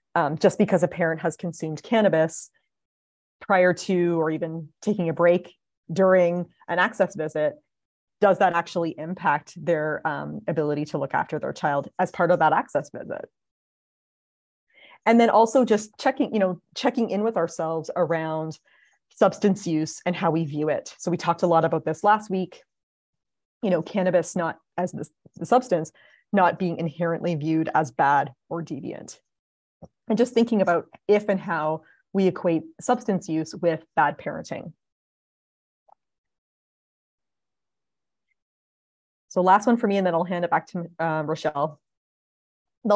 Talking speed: 155 wpm